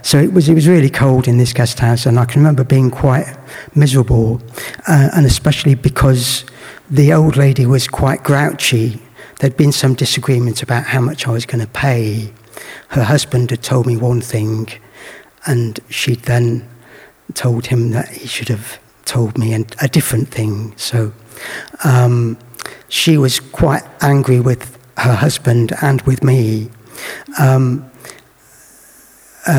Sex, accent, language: male, British, English